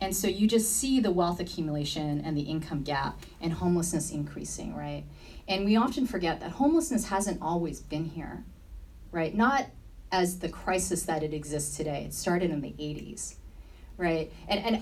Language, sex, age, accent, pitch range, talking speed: English, female, 30-49, American, 155-200 Hz, 175 wpm